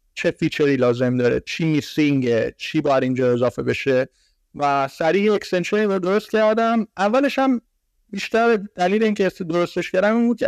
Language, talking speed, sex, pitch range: Persian, 135 wpm, male, 140-195 Hz